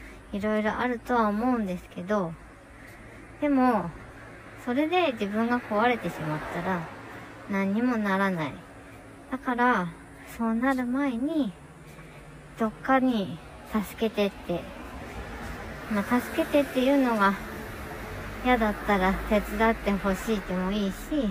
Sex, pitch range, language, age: male, 180-230 Hz, Japanese, 40-59